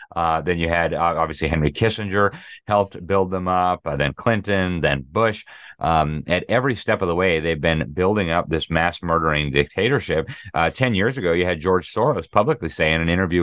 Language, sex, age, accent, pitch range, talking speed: English, male, 30-49, American, 80-95 Hz, 200 wpm